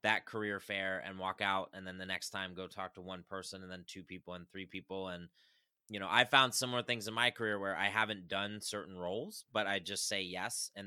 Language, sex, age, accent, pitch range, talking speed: English, male, 30-49, American, 95-120 Hz, 250 wpm